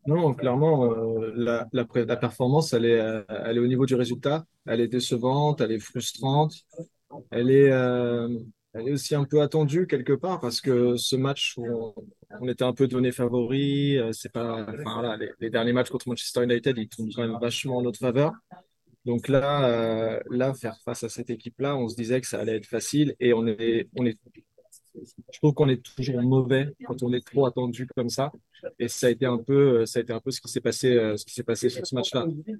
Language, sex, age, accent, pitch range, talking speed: French, male, 20-39, French, 115-135 Hz, 220 wpm